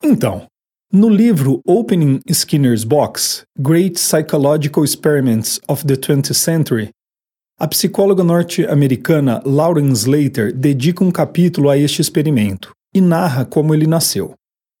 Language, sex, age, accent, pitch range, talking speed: Portuguese, male, 40-59, Brazilian, 135-175 Hz, 120 wpm